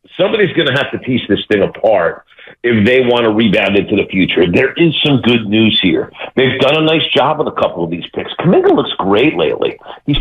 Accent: American